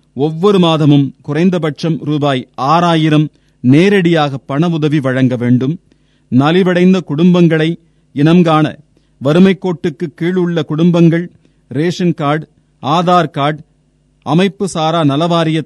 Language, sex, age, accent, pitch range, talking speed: Tamil, male, 30-49, native, 140-170 Hz, 90 wpm